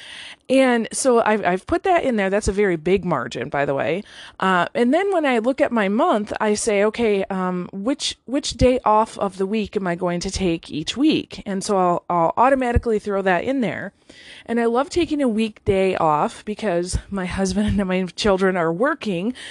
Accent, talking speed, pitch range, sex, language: American, 210 wpm, 185-240 Hz, female, English